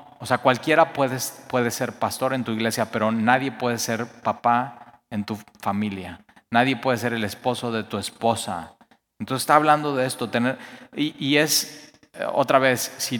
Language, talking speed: Spanish, 165 wpm